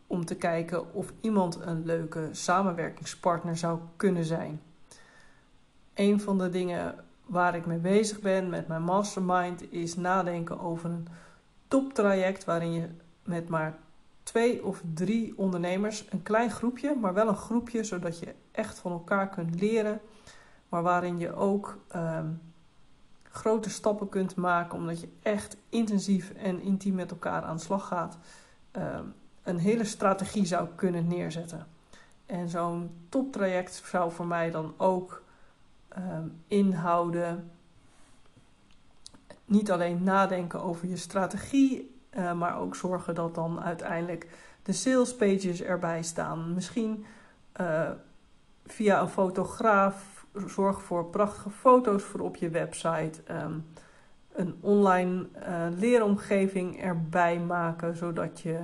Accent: Dutch